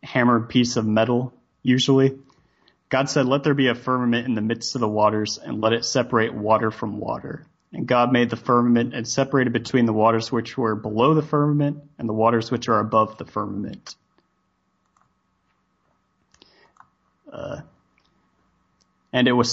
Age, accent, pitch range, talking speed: 30-49, American, 110-125 Hz, 160 wpm